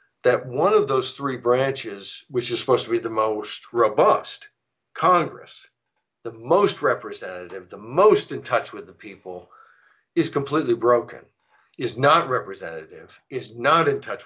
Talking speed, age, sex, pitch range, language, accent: 145 wpm, 50-69, male, 125-185 Hz, English, American